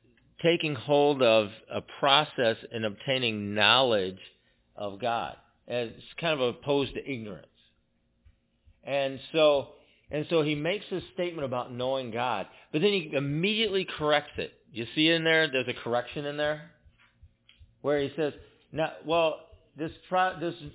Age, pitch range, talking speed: 50-69, 130-170 Hz, 145 wpm